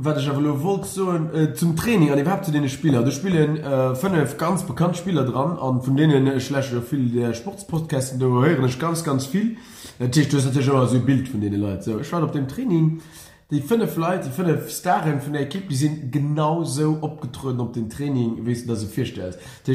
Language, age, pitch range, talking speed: English, 30-49, 115-145 Hz, 245 wpm